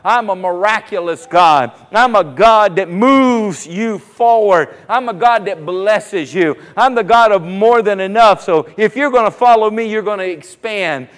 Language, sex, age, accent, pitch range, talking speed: English, male, 50-69, American, 190-240 Hz, 190 wpm